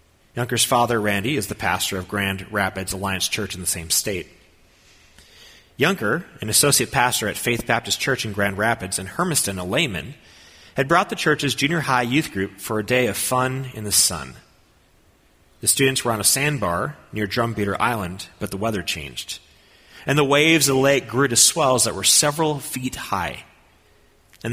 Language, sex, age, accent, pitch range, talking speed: English, male, 30-49, American, 90-125 Hz, 180 wpm